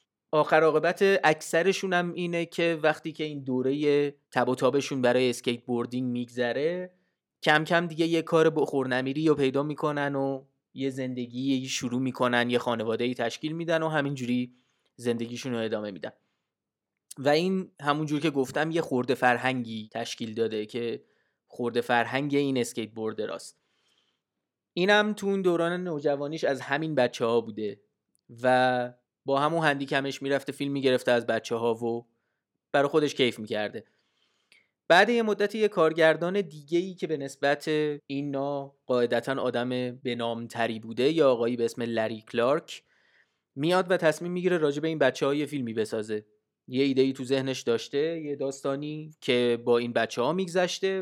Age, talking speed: 30-49, 155 wpm